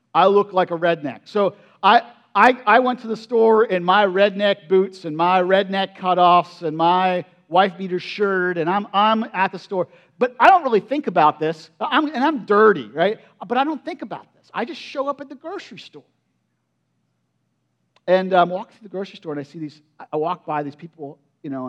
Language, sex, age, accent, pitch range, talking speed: English, male, 50-69, American, 145-220 Hz, 210 wpm